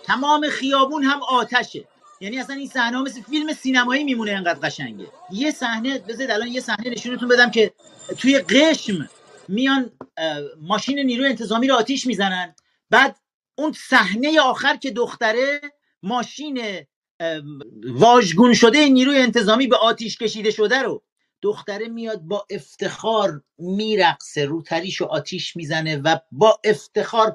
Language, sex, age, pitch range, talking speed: Persian, male, 40-59, 180-245 Hz, 130 wpm